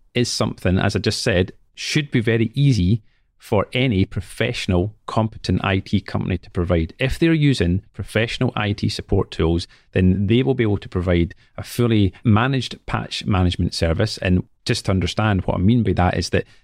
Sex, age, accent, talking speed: male, 40-59, British, 175 wpm